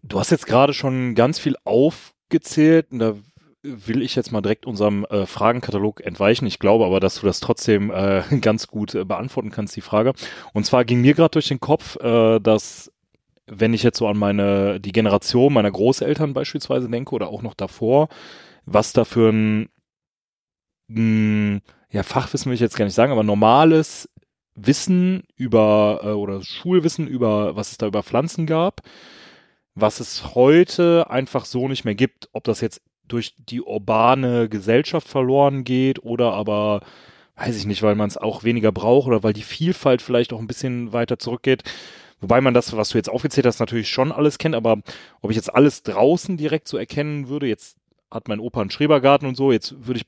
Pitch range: 105-140 Hz